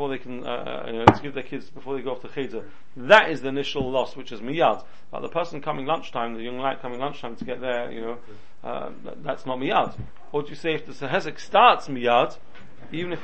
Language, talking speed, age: English, 245 wpm, 40-59